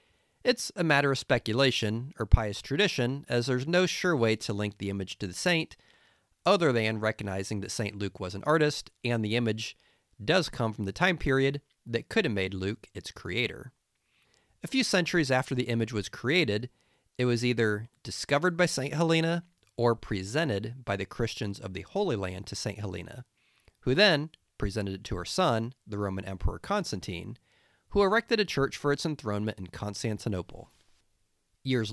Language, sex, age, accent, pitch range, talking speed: English, male, 40-59, American, 100-140 Hz, 175 wpm